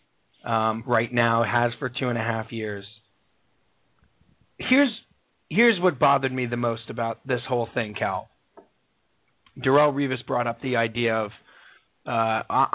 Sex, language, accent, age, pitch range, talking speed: male, English, American, 30-49, 120-160 Hz, 140 wpm